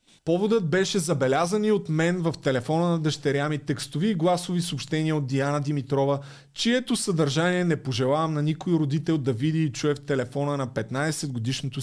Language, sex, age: Bulgarian, male, 30-49